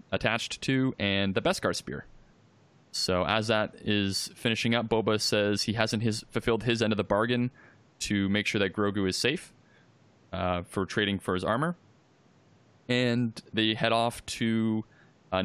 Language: English